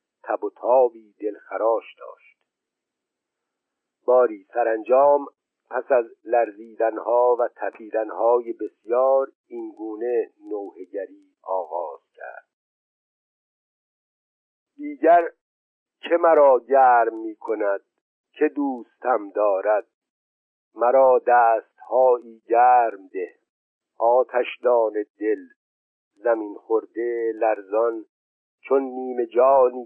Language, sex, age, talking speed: Persian, male, 50-69, 70 wpm